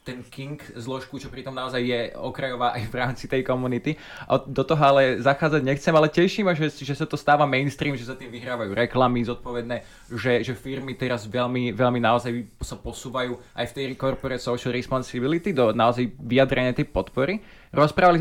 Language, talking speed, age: Slovak, 175 wpm, 20-39